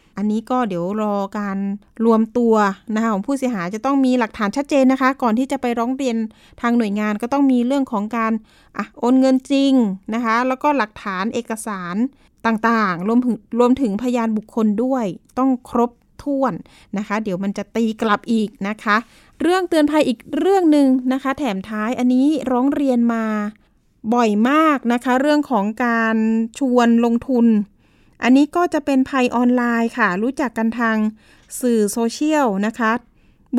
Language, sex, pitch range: Thai, female, 220-275 Hz